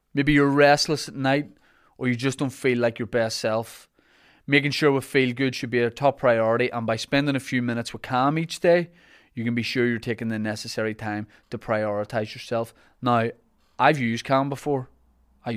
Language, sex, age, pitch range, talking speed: English, male, 20-39, 115-135 Hz, 200 wpm